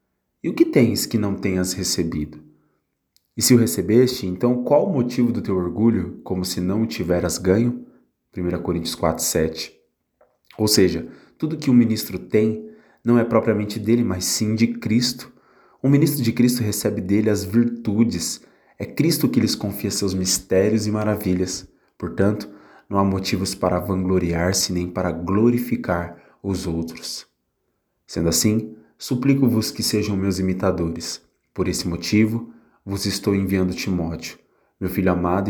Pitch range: 90-110 Hz